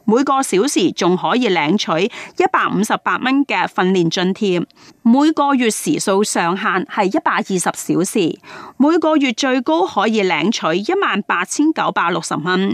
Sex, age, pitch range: female, 30-49, 190-290 Hz